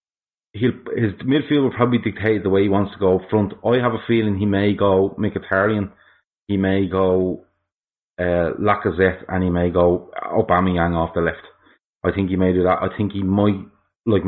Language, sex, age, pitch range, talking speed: English, male, 30-49, 95-110 Hz, 195 wpm